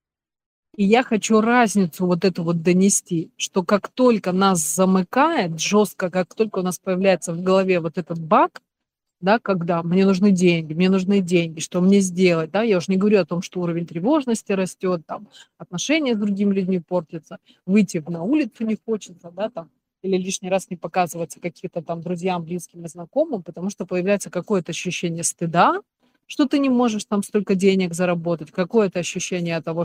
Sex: female